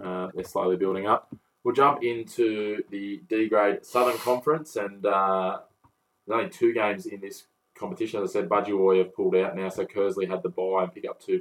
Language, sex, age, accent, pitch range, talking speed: English, male, 20-39, Australian, 90-105 Hz, 205 wpm